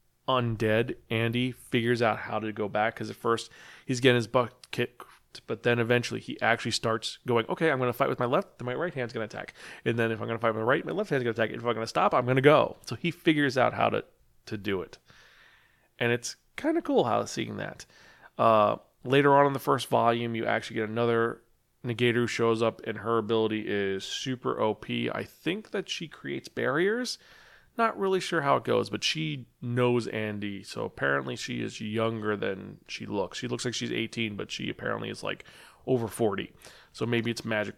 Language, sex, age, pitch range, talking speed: English, male, 30-49, 110-130 Hz, 215 wpm